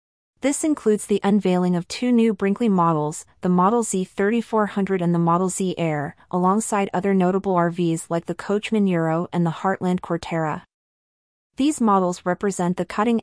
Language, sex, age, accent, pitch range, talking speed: English, female, 30-49, American, 170-205 Hz, 155 wpm